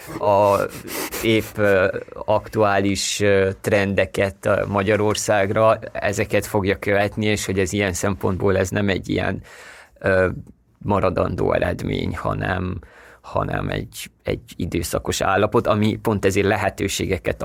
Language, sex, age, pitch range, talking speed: Hungarian, male, 20-39, 95-105 Hz, 100 wpm